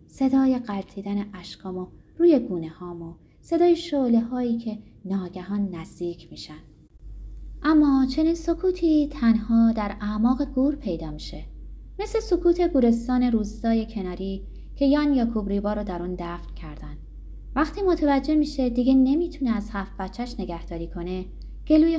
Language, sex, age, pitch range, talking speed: Persian, female, 20-39, 190-280 Hz, 130 wpm